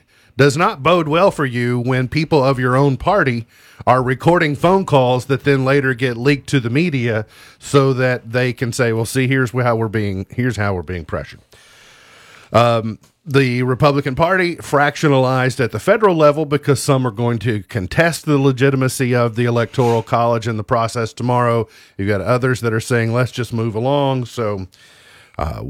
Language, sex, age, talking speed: English, male, 40-59, 180 wpm